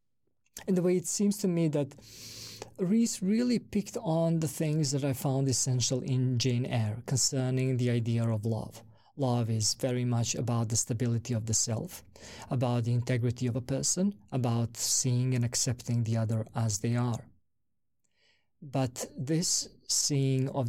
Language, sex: English, male